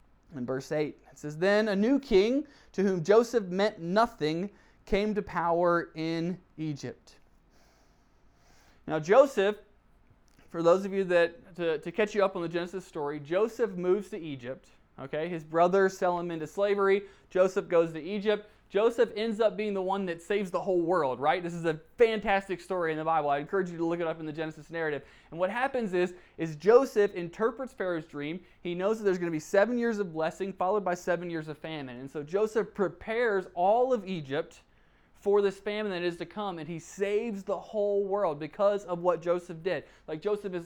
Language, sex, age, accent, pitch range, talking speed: English, male, 20-39, American, 165-210 Hz, 200 wpm